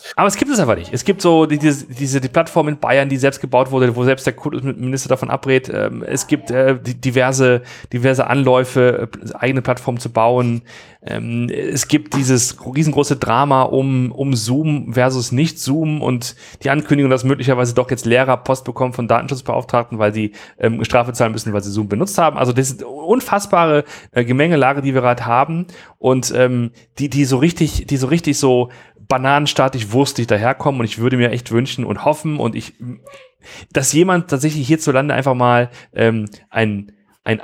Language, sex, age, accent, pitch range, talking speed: German, male, 40-59, German, 120-145 Hz, 185 wpm